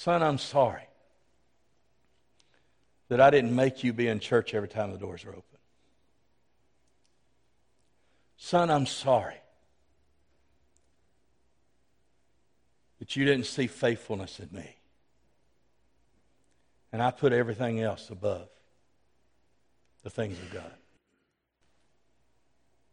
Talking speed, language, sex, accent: 95 wpm, English, male, American